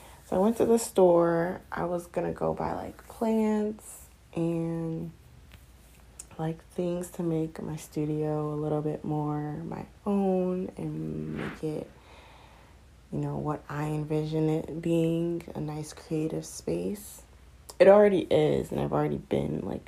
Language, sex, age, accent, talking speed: English, female, 20-39, American, 150 wpm